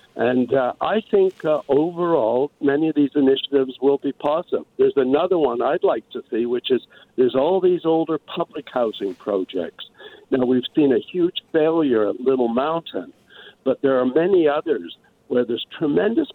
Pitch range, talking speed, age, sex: 125-165 Hz, 170 wpm, 60-79, male